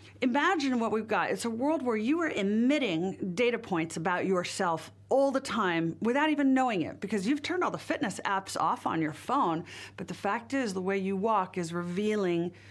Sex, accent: female, American